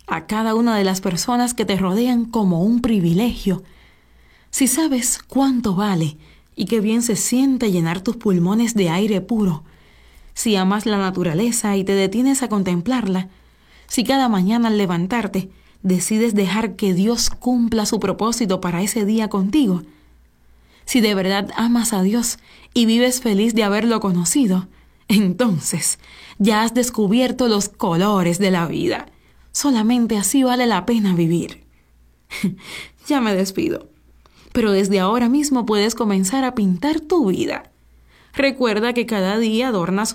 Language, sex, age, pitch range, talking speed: Spanish, female, 30-49, 190-245 Hz, 145 wpm